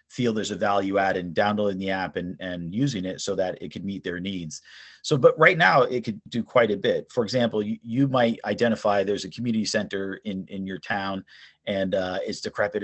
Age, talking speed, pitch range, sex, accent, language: 30-49, 225 wpm, 95-110 Hz, male, American, English